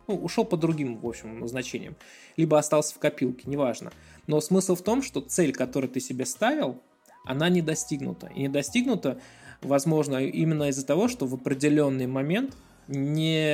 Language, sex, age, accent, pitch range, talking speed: Russian, male, 20-39, native, 130-170 Hz, 165 wpm